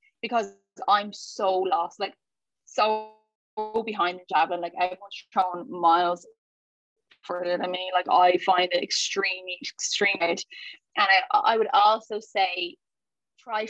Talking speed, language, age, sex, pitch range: 130 wpm, English, 10-29, female, 185-220 Hz